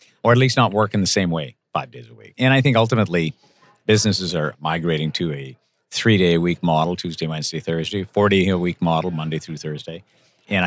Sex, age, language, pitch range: male, 50-69, English, 80-105 Hz